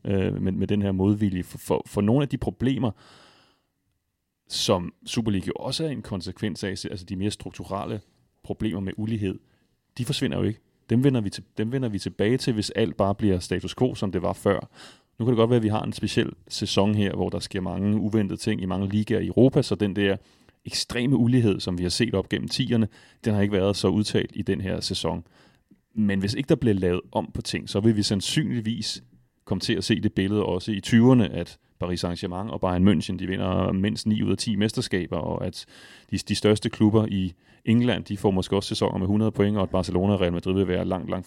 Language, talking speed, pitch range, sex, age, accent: Danish, 225 wpm, 95-110 Hz, male, 30-49, native